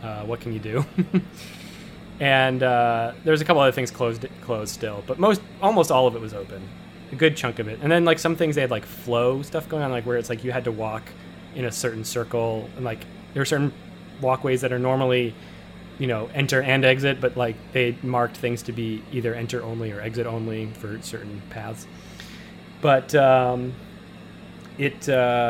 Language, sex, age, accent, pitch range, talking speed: English, male, 20-39, American, 115-145 Hz, 200 wpm